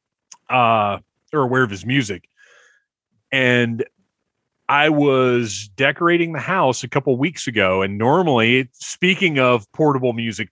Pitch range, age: 110-135 Hz, 30-49